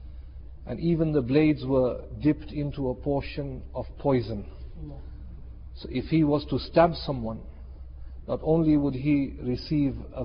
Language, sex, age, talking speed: English, male, 50-69, 140 wpm